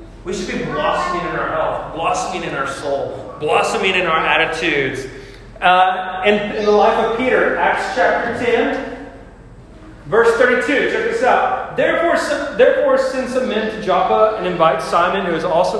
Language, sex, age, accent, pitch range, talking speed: English, male, 30-49, American, 145-225 Hz, 165 wpm